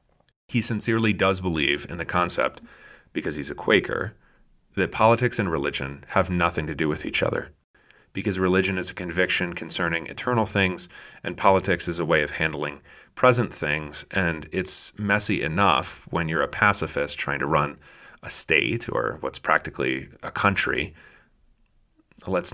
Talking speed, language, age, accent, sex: 155 wpm, English, 30-49, American, male